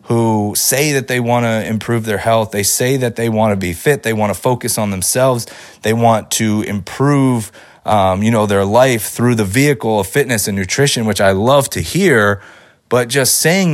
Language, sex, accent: English, male, American